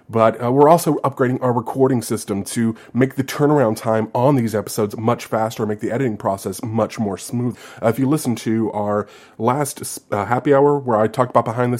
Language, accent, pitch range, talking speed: English, American, 110-135 Hz, 210 wpm